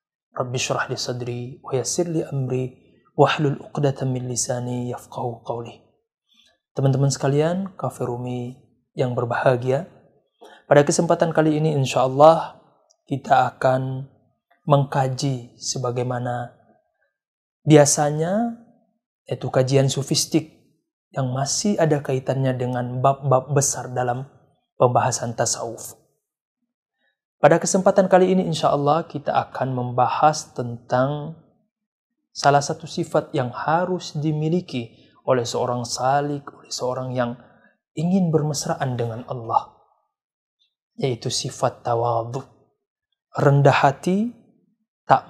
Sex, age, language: male, 20-39, Indonesian